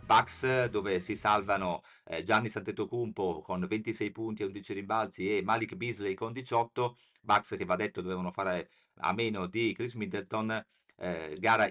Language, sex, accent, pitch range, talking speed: Italian, male, native, 100-120 Hz, 150 wpm